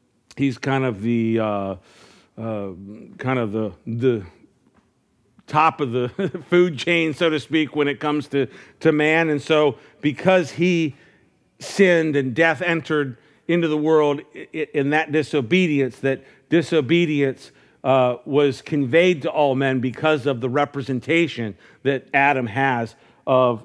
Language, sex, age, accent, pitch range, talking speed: English, male, 50-69, American, 130-165 Hz, 140 wpm